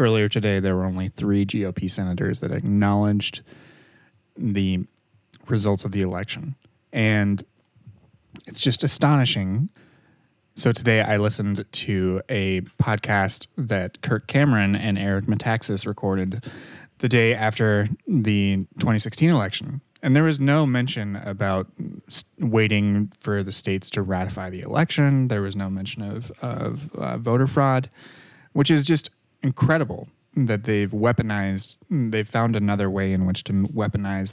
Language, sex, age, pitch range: English, male, 30-49, 100-125 Hz